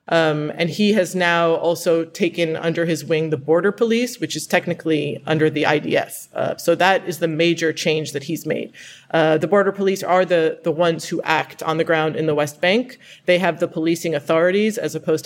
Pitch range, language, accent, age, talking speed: 155-185 Hz, English, American, 30-49, 210 wpm